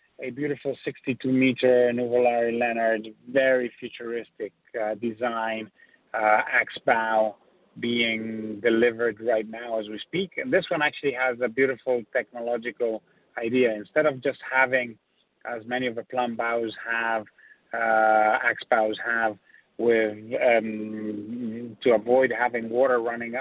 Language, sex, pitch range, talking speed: English, male, 110-125 Hz, 130 wpm